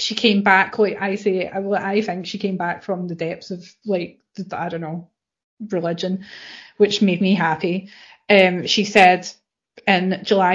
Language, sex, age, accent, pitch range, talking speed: English, female, 30-49, British, 190-215 Hz, 165 wpm